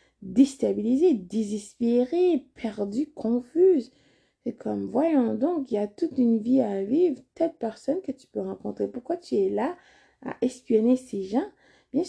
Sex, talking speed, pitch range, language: female, 155 wpm, 210-255 Hz, French